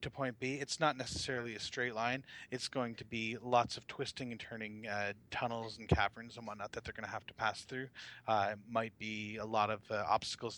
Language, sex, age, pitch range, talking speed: English, male, 30-49, 110-140 Hz, 235 wpm